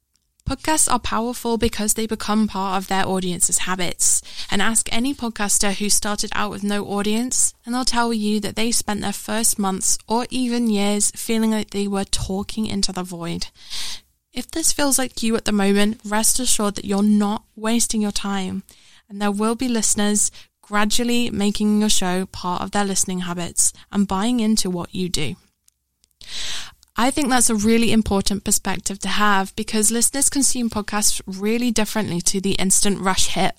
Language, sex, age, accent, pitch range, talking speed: English, female, 20-39, British, 195-230 Hz, 175 wpm